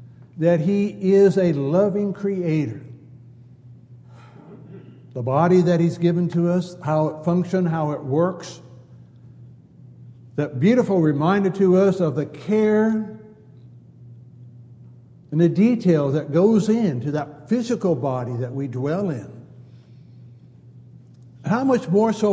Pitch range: 125-185 Hz